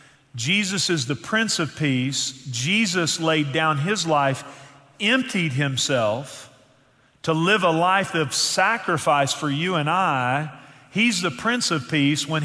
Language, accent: English, American